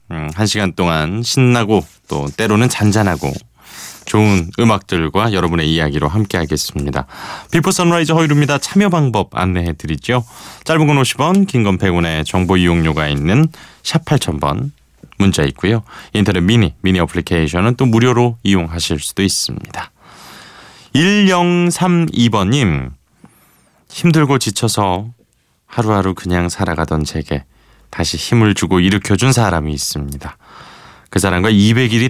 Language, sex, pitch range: Korean, male, 80-115 Hz